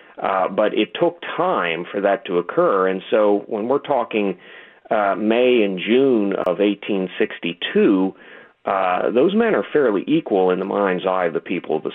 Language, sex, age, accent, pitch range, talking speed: English, male, 40-59, American, 90-105 Hz, 175 wpm